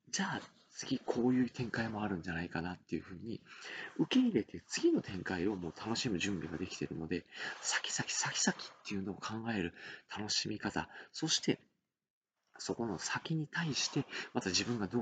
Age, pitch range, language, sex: 40-59, 90-130 Hz, Japanese, male